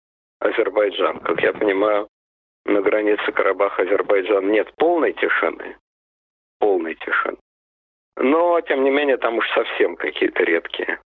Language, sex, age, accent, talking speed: Russian, male, 50-69, native, 125 wpm